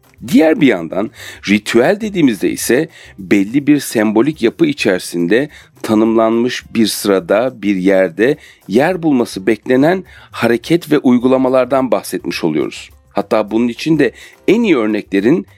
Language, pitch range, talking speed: Turkish, 100-140 Hz, 120 wpm